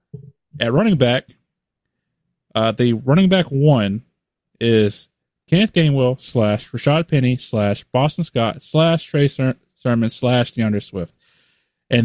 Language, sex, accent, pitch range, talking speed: English, male, American, 105-145 Hz, 120 wpm